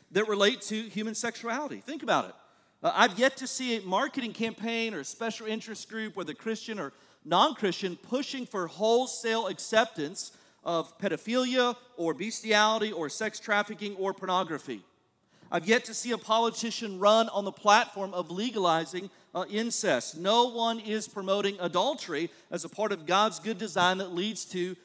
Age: 40-59